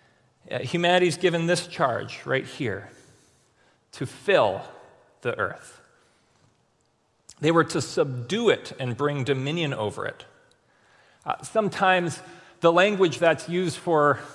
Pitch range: 135-175 Hz